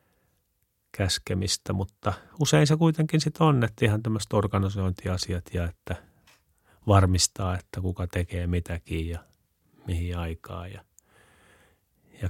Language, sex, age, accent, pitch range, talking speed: Finnish, male, 30-49, native, 90-105 Hz, 110 wpm